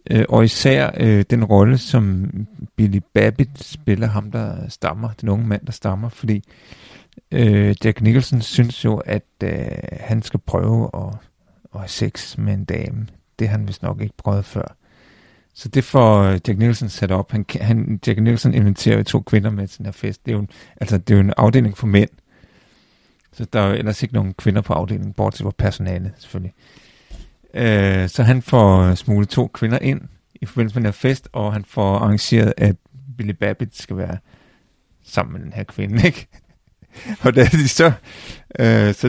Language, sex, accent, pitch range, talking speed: Danish, male, native, 100-120 Hz, 185 wpm